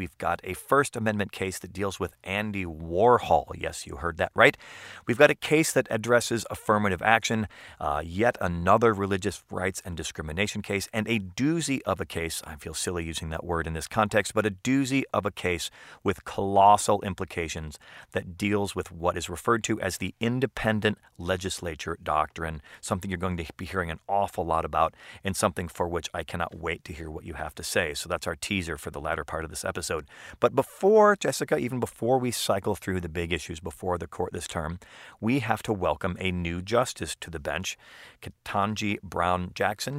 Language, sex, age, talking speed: English, male, 40-59, 200 wpm